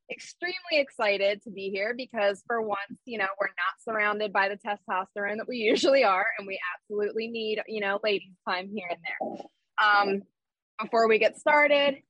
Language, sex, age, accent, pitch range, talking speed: English, female, 20-39, American, 195-260 Hz, 180 wpm